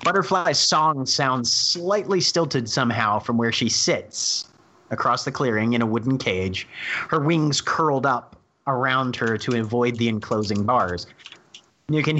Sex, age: male, 30-49